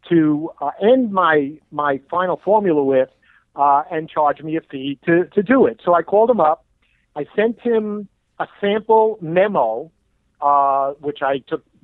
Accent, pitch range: American, 145-180 Hz